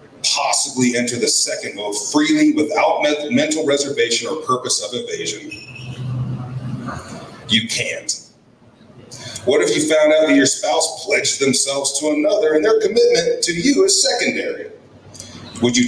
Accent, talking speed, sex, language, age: American, 135 wpm, male, English, 40-59